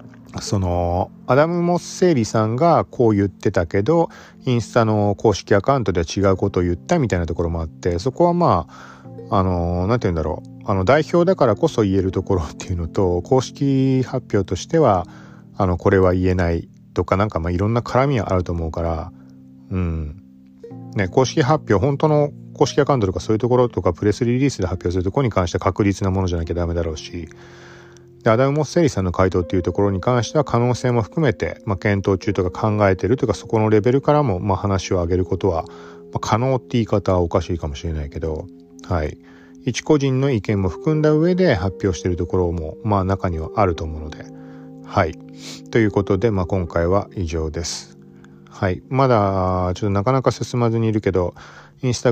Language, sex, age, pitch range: Japanese, male, 40-59, 90-125 Hz